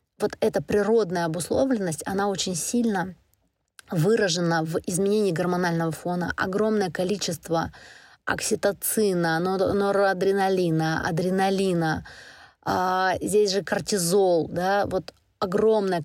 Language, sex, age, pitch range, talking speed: Russian, female, 20-39, 175-210 Hz, 85 wpm